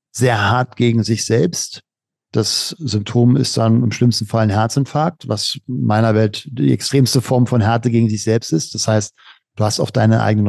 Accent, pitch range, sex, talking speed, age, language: German, 105-120 Hz, male, 195 wpm, 50-69, German